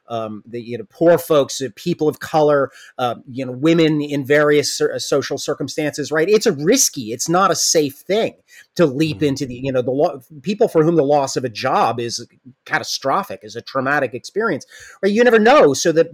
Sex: male